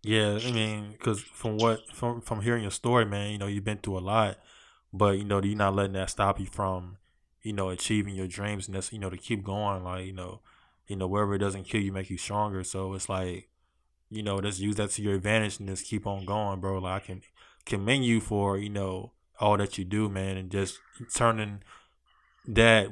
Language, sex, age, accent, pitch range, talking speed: English, male, 20-39, American, 95-105 Hz, 230 wpm